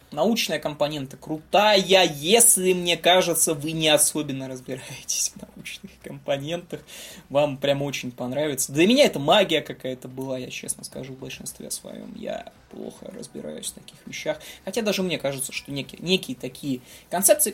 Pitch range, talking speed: 135-220 Hz, 150 wpm